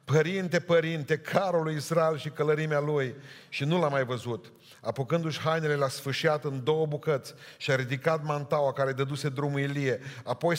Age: 40-59